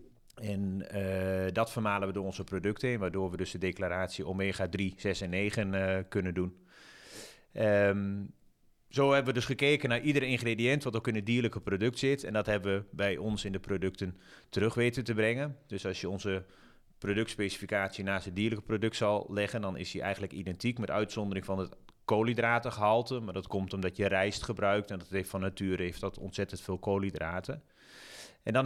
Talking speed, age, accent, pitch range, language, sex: 190 wpm, 30-49, Dutch, 95-115 Hz, Dutch, male